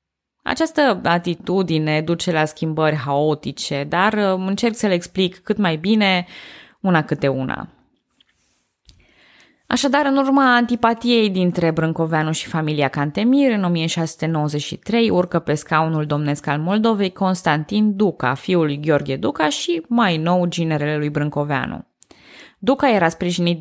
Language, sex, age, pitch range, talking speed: Romanian, female, 20-39, 150-195 Hz, 120 wpm